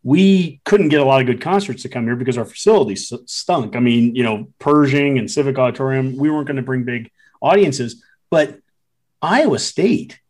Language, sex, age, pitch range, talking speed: English, male, 40-59, 120-150 Hz, 190 wpm